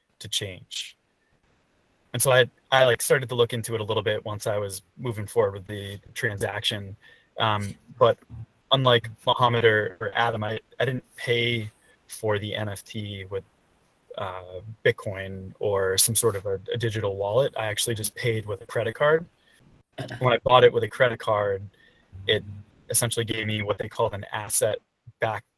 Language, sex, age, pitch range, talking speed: English, male, 20-39, 100-115 Hz, 170 wpm